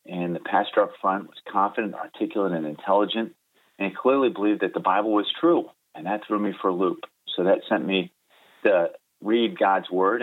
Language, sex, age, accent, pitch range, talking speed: English, male, 30-49, American, 90-110 Hz, 195 wpm